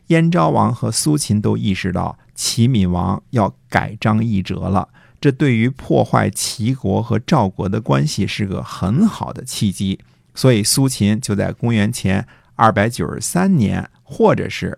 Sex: male